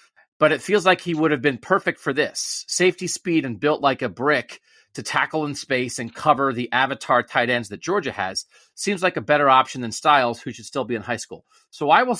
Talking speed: 235 wpm